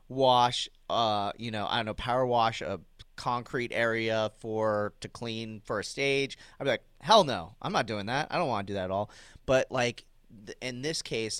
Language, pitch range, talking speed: English, 100-120 Hz, 210 wpm